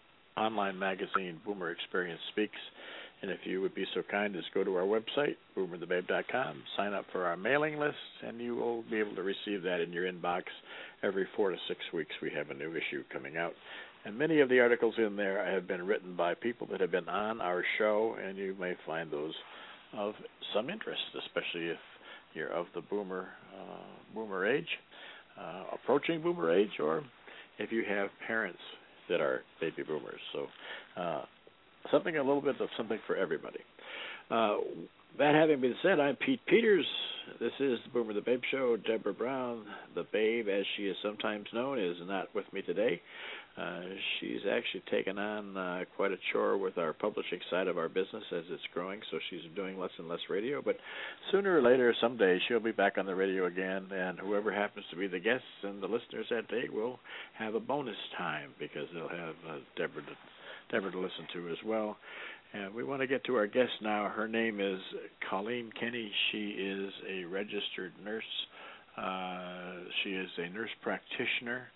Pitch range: 95-140 Hz